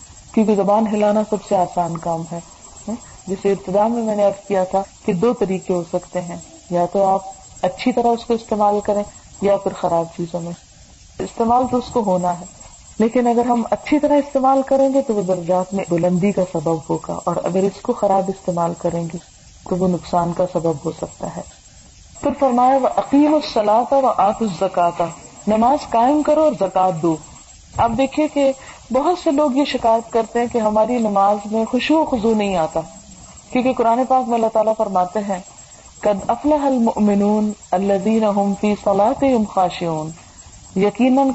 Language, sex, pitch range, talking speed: Urdu, female, 180-235 Hz, 175 wpm